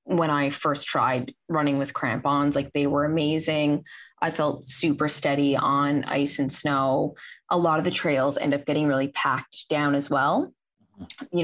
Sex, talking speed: female, 175 wpm